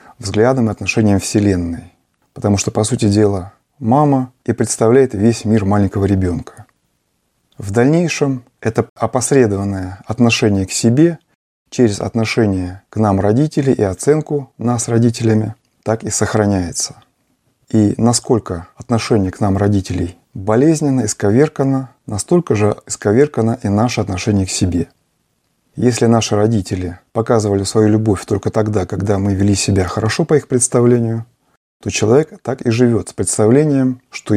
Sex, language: male, Russian